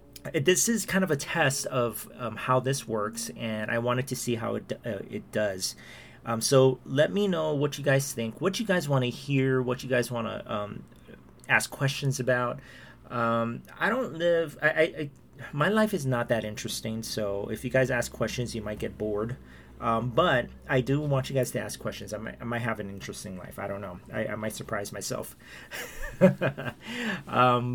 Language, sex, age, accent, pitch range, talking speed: English, male, 40-59, American, 110-135 Hz, 205 wpm